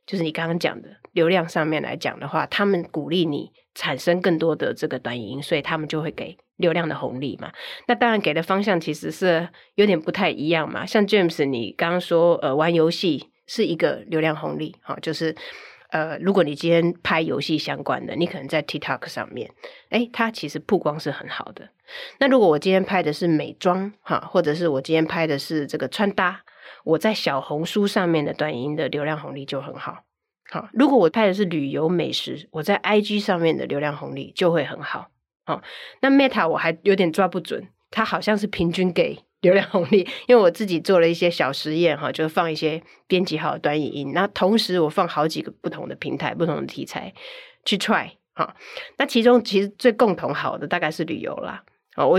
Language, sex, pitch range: Chinese, female, 155-200 Hz